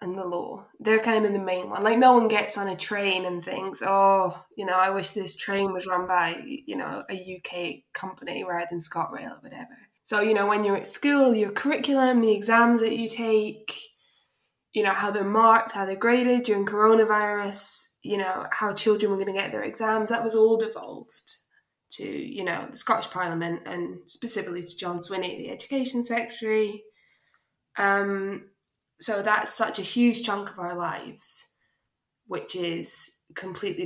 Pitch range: 195-230 Hz